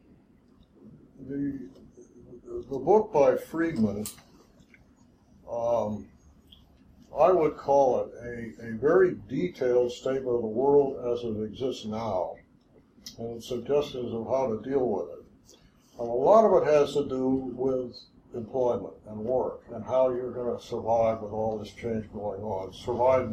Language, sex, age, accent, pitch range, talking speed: English, male, 60-79, American, 110-125 Hz, 140 wpm